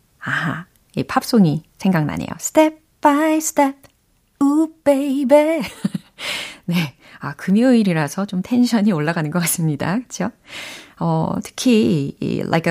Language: Korean